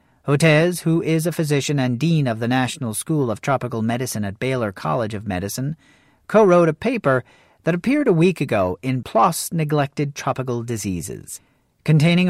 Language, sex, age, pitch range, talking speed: English, male, 40-59, 120-165 Hz, 160 wpm